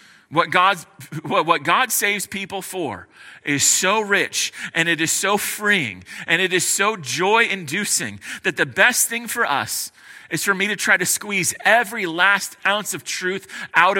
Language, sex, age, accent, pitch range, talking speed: English, male, 30-49, American, 165-200 Hz, 175 wpm